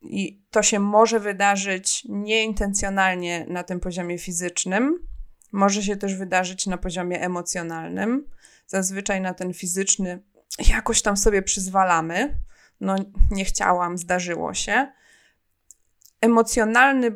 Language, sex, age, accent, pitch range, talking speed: Polish, female, 20-39, native, 180-220 Hz, 110 wpm